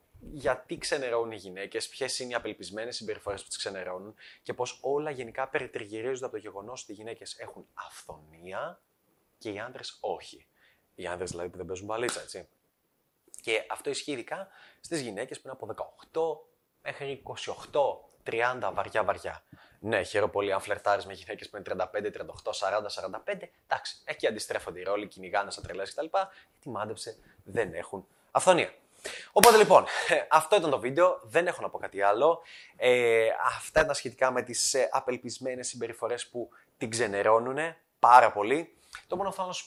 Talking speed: 160 wpm